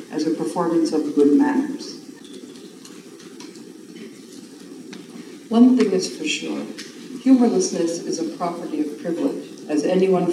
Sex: female